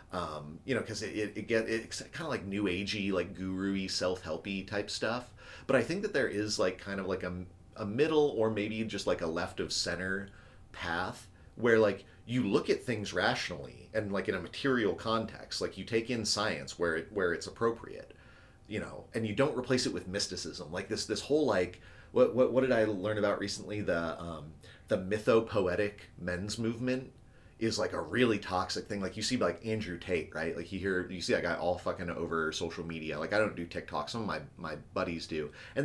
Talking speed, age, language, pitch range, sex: 215 wpm, 30-49, English, 90-110 Hz, male